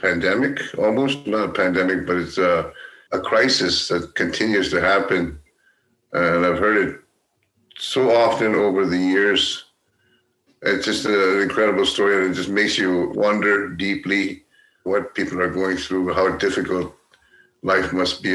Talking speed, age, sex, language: 145 wpm, 50-69, male, English